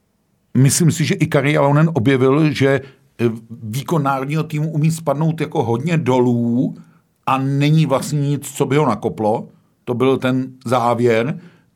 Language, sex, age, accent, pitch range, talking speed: Czech, male, 50-69, native, 115-140 Hz, 140 wpm